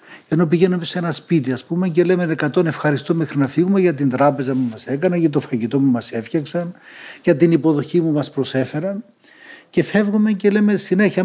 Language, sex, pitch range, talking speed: Greek, male, 135-170 Hz, 195 wpm